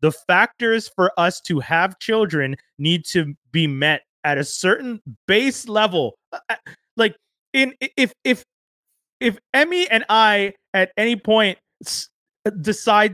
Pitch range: 145-205 Hz